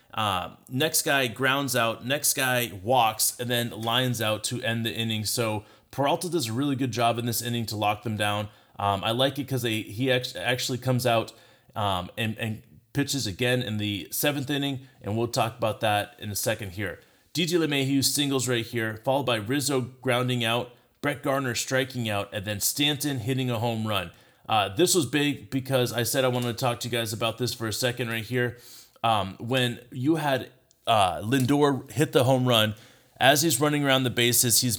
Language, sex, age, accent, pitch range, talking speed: English, male, 30-49, American, 115-135 Hz, 200 wpm